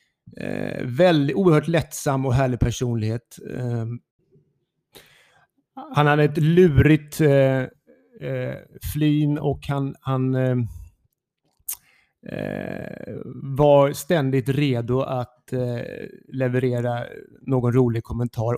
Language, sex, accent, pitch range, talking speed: Swedish, male, native, 115-145 Hz, 95 wpm